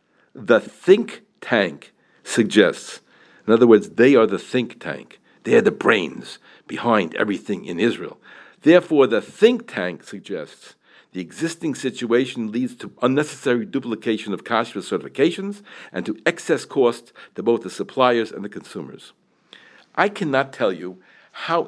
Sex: male